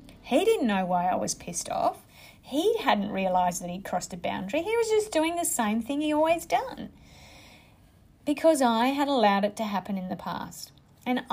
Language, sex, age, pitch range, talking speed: English, female, 30-49, 190-245 Hz, 195 wpm